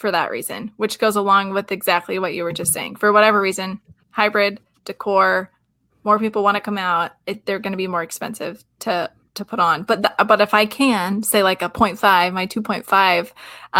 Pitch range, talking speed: 185-210 Hz, 205 wpm